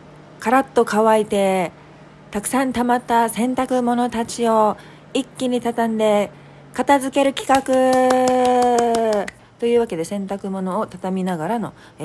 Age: 40-59